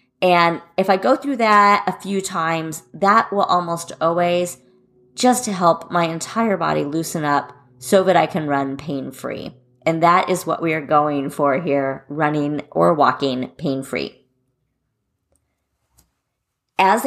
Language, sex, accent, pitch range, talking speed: English, female, American, 150-200 Hz, 145 wpm